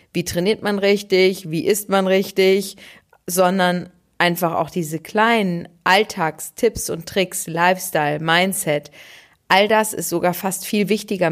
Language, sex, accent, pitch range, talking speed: German, female, German, 160-190 Hz, 135 wpm